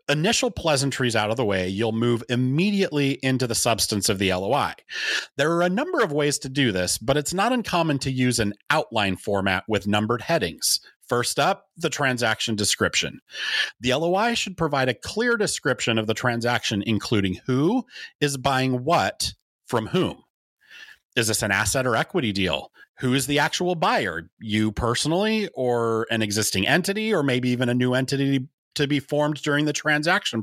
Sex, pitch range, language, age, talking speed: male, 110-155 Hz, English, 30-49, 175 wpm